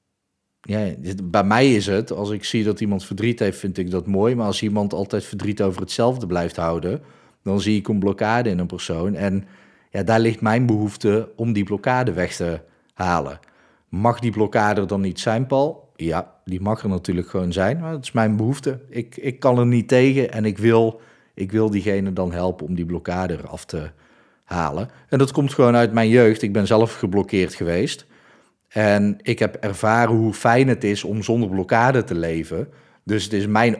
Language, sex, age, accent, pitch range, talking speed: Dutch, male, 40-59, Dutch, 95-115 Hz, 195 wpm